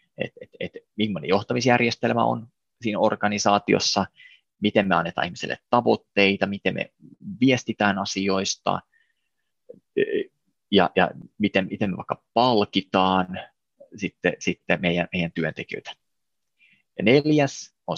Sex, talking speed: male, 105 wpm